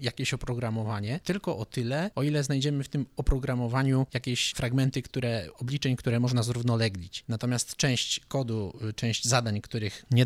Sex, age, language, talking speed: male, 20-39, Polish, 145 wpm